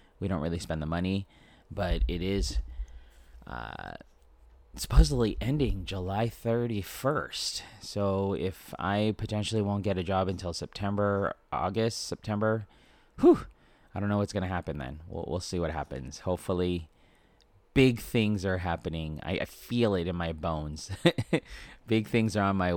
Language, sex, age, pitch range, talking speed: English, male, 30-49, 80-100 Hz, 150 wpm